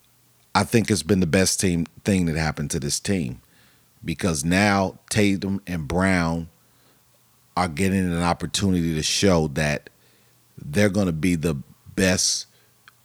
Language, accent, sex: English, American, male